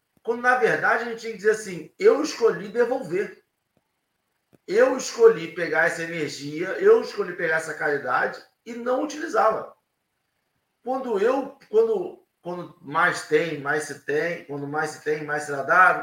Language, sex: Portuguese, male